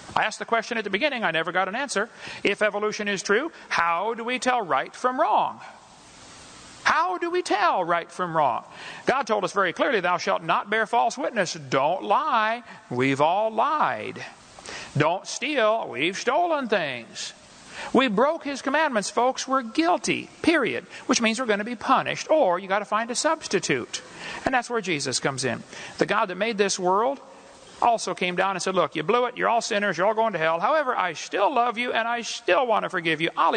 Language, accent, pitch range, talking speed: Filipino, American, 190-250 Hz, 205 wpm